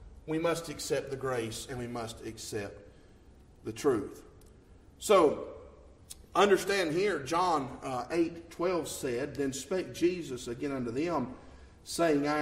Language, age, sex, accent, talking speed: English, 50-69, male, American, 120 wpm